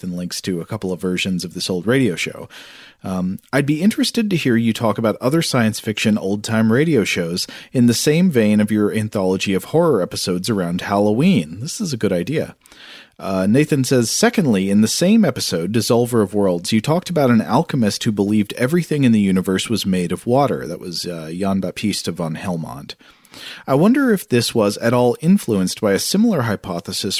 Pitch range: 95-130 Hz